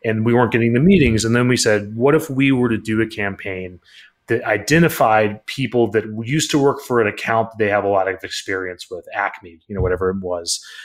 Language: English